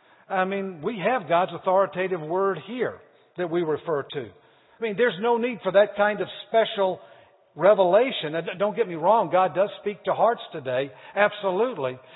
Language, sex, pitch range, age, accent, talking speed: English, male, 170-225 Hz, 50-69, American, 170 wpm